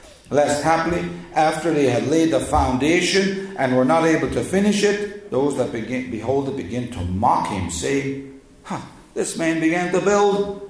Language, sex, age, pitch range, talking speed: English, male, 50-69, 100-160 Hz, 170 wpm